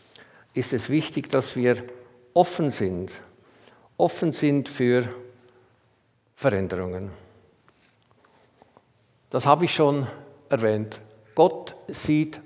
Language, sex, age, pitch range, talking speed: German, male, 50-69, 125-180 Hz, 85 wpm